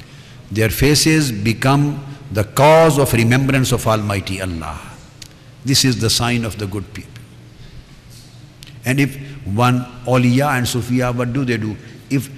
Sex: male